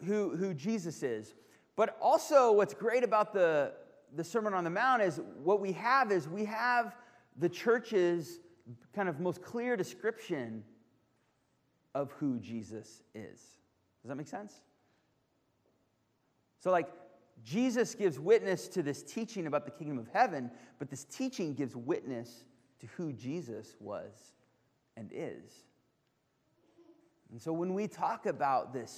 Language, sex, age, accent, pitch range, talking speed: English, male, 30-49, American, 130-180 Hz, 140 wpm